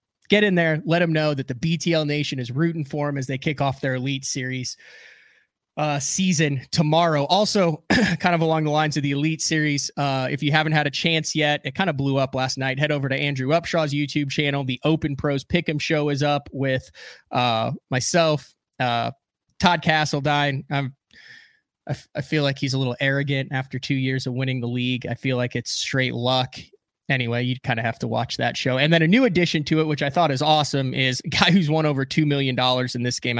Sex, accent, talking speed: male, American, 220 wpm